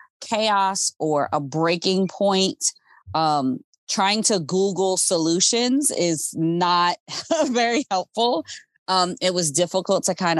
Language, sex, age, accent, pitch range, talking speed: English, female, 20-39, American, 165-200 Hz, 115 wpm